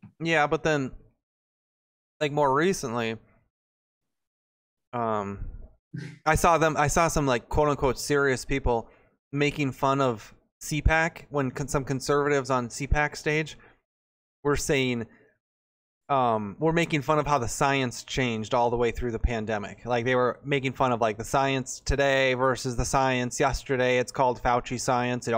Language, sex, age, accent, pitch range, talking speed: English, male, 20-39, American, 120-155 Hz, 155 wpm